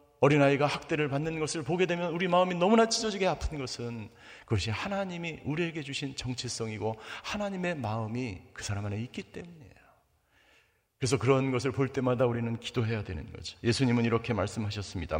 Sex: male